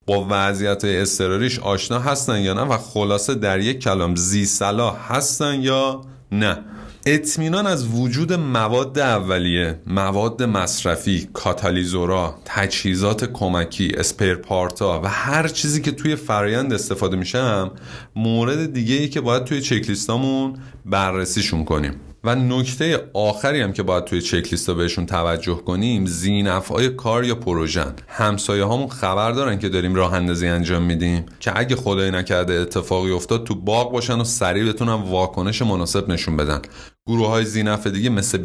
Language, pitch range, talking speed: Persian, 95-125 Hz, 135 wpm